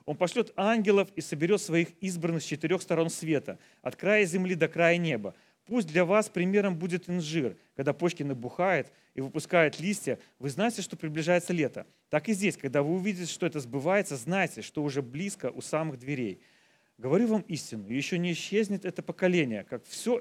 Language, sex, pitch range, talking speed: Russian, male, 145-195 Hz, 180 wpm